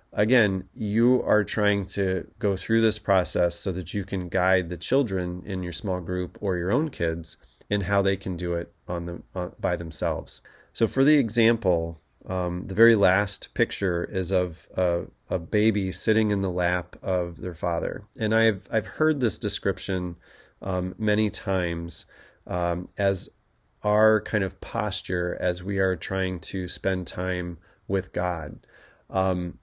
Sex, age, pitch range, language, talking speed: male, 30-49, 90-105 Hz, English, 165 wpm